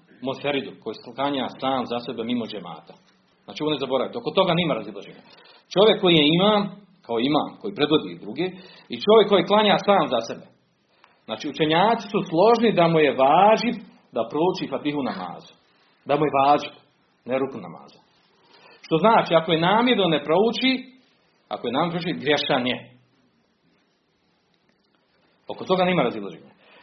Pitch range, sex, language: 135-190 Hz, male, Croatian